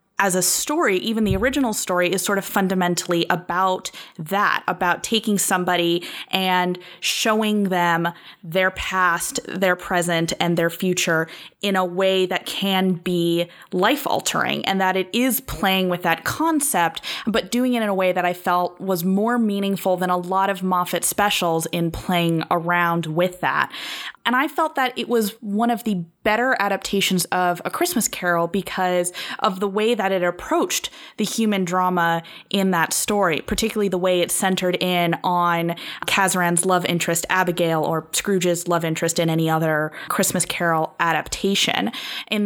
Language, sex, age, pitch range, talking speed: English, female, 20-39, 175-200 Hz, 165 wpm